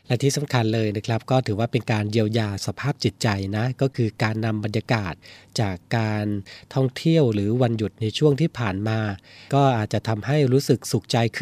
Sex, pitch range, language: male, 105-125 Hz, Thai